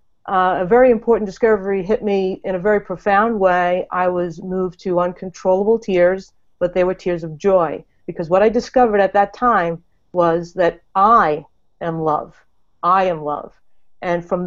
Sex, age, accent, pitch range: female, 50-69, American, 175-210 Hz